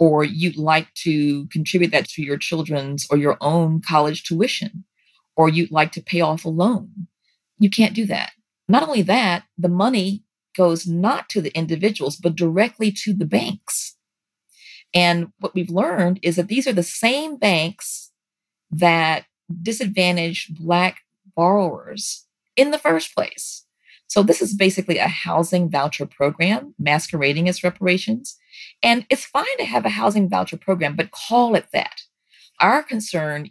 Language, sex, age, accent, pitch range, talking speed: English, female, 40-59, American, 165-210 Hz, 155 wpm